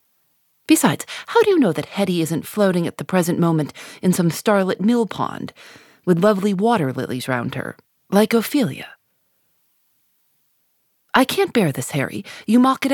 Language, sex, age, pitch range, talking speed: English, female, 30-49, 155-225 Hz, 160 wpm